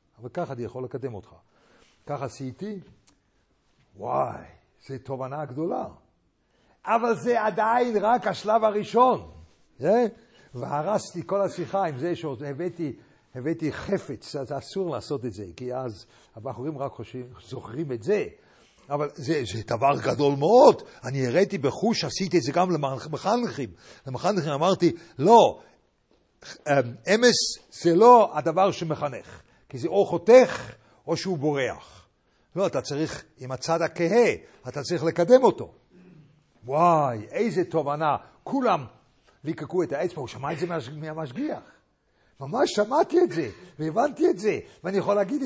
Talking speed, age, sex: 125 wpm, 60-79, male